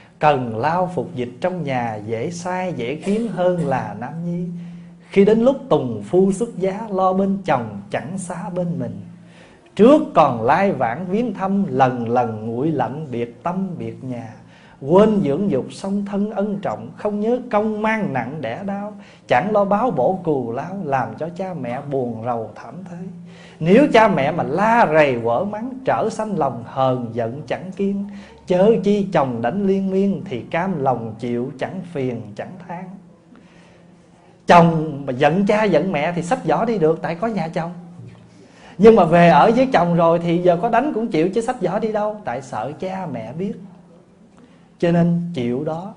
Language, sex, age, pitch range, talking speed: Vietnamese, male, 20-39, 150-195 Hz, 185 wpm